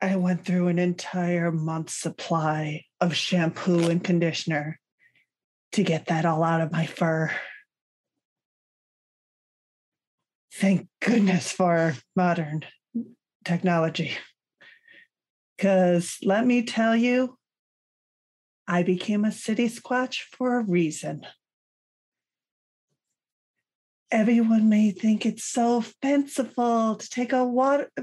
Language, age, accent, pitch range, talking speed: English, 30-49, American, 170-225 Hz, 100 wpm